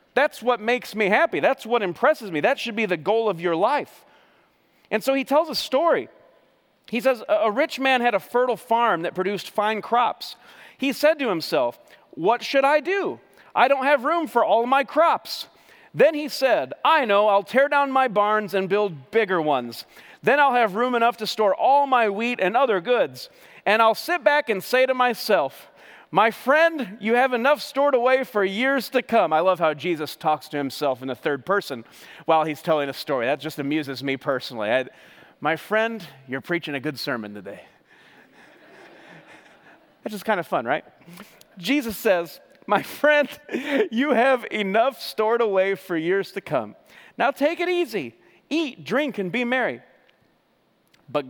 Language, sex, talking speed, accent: English, male, 180 wpm, American